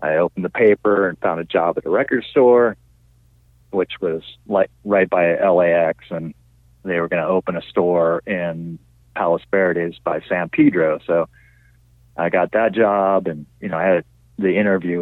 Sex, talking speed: male, 175 wpm